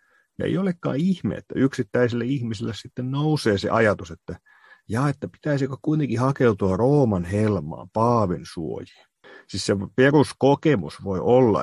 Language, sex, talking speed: Finnish, male, 130 wpm